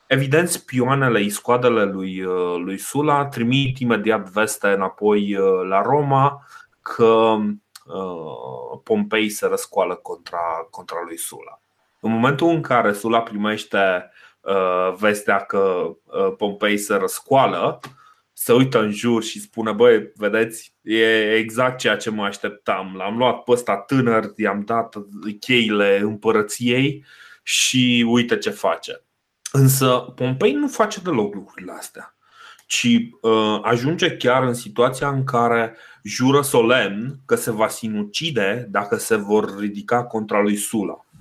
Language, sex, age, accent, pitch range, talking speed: Romanian, male, 20-39, native, 105-140 Hz, 120 wpm